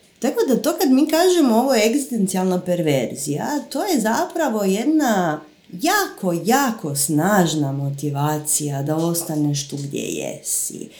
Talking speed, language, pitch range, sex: 120 wpm, Croatian, 155-225 Hz, female